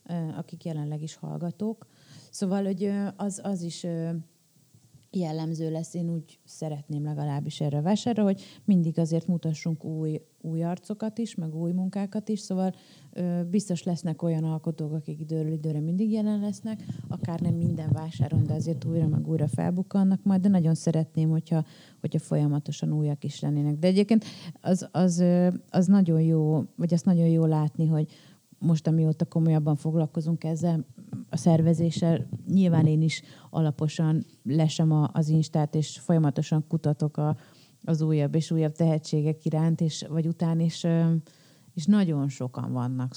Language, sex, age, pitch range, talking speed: Hungarian, female, 30-49, 150-175 Hz, 145 wpm